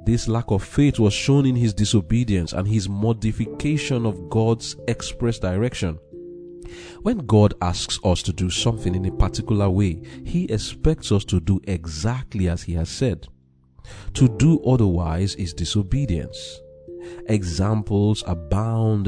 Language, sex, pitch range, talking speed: English, male, 90-120 Hz, 140 wpm